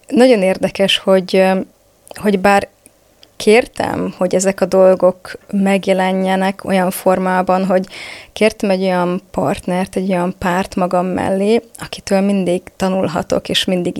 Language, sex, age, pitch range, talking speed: Hungarian, female, 20-39, 185-210 Hz, 120 wpm